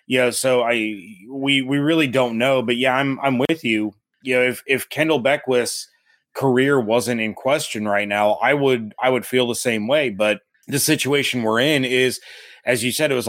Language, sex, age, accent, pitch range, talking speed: English, male, 30-49, American, 115-135 Hz, 210 wpm